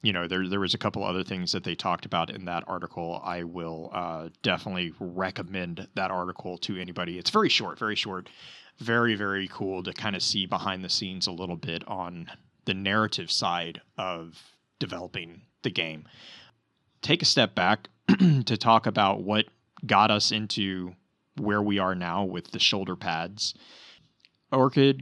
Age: 20-39